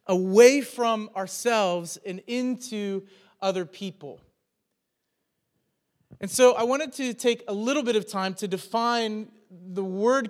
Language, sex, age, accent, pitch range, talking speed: English, male, 30-49, American, 190-235 Hz, 130 wpm